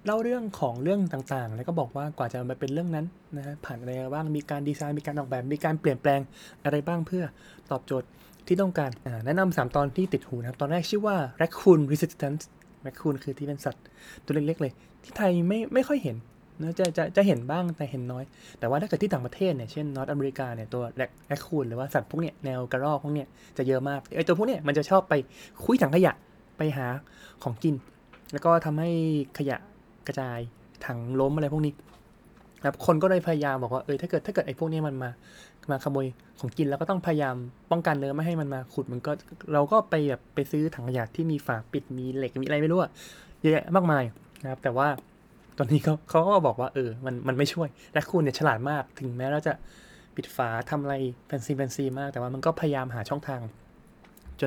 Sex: male